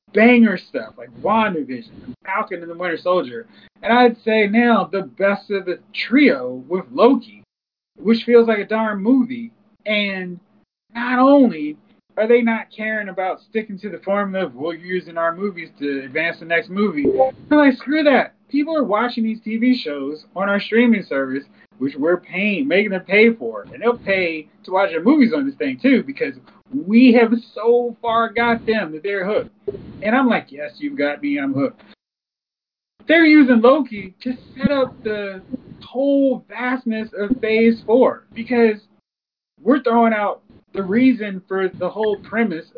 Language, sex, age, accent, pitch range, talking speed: English, male, 30-49, American, 195-240 Hz, 170 wpm